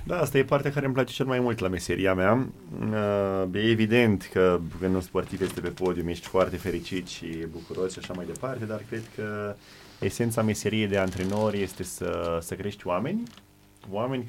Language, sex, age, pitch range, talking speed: Romanian, male, 20-39, 90-110 Hz, 185 wpm